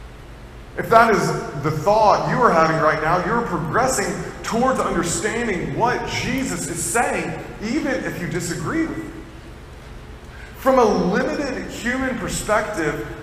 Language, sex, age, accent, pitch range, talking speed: English, male, 30-49, American, 140-205 Hz, 130 wpm